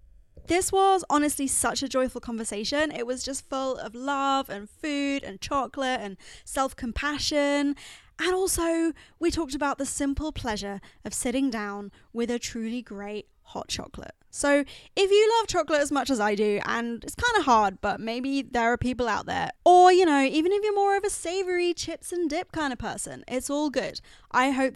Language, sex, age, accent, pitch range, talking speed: English, female, 10-29, British, 225-320 Hz, 190 wpm